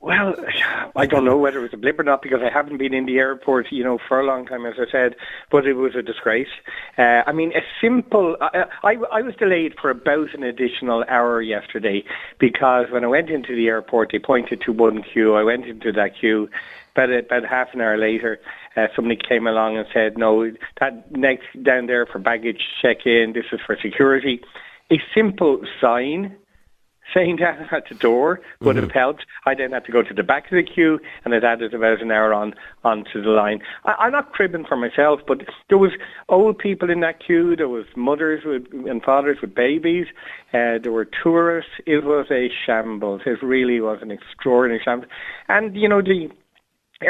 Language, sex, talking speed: English, male, 205 wpm